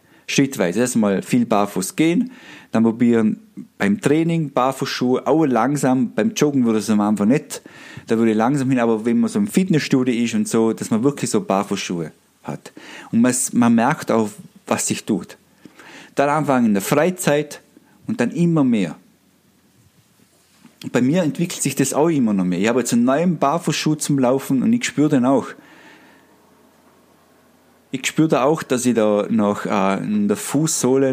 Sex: male